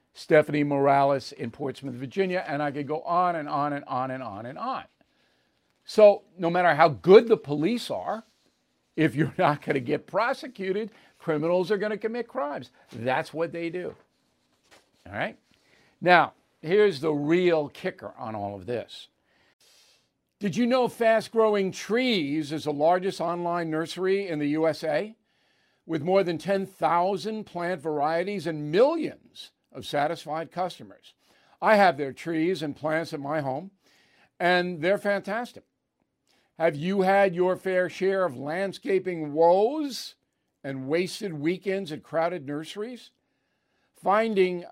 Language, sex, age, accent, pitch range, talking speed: English, male, 50-69, American, 155-200 Hz, 145 wpm